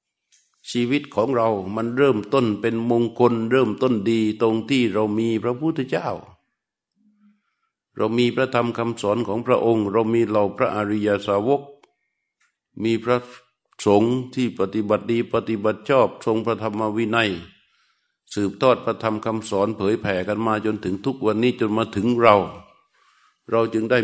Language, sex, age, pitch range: Thai, male, 60-79, 105-120 Hz